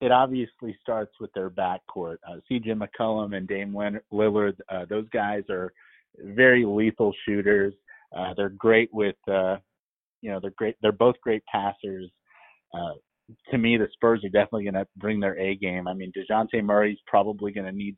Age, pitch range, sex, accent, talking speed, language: 30-49, 95-115 Hz, male, American, 175 wpm, English